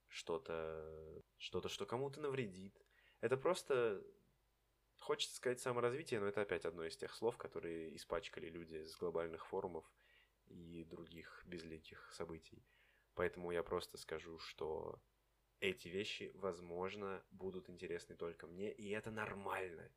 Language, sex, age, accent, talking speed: Russian, male, 20-39, native, 130 wpm